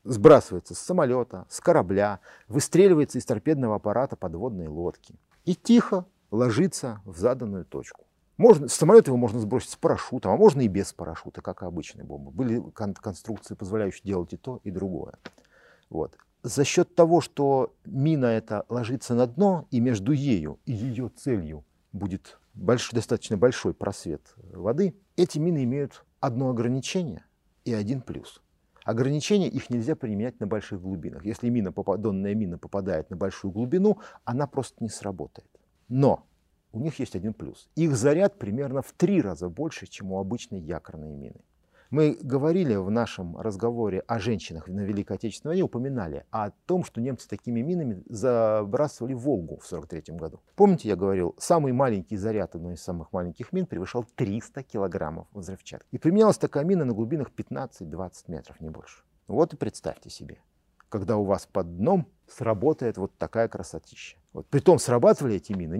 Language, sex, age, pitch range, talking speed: Russian, male, 40-59, 100-140 Hz, 160 wpm